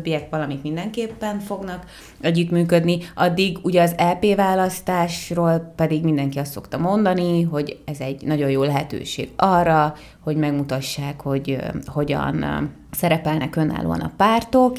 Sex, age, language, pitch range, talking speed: female, 20-39, Hungarian, 145-170 Hz, 120 wpm